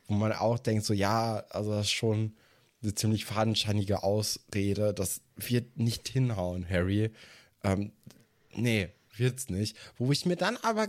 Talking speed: 155 wpm